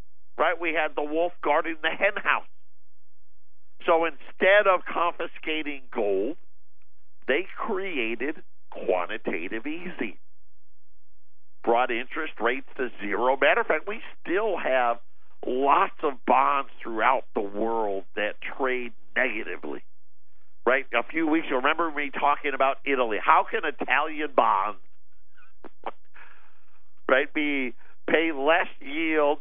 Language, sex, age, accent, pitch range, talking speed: English, male, 50-69, American, 100-160 Hz, 115 wpm